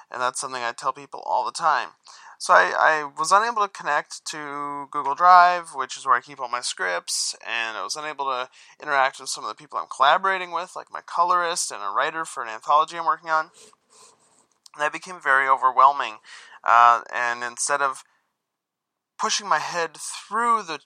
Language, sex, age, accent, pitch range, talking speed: English, male, 20-39, American, 130-170 Hz, 195 wpm